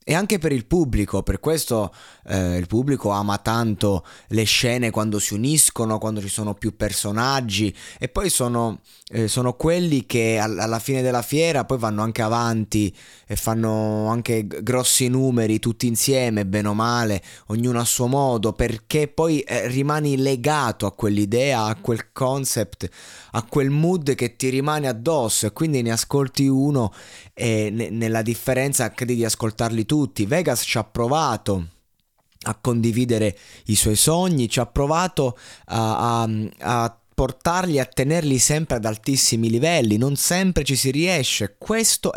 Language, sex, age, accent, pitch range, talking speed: Italian, male, 20-39, native, 110-135 Hz, 155 wpm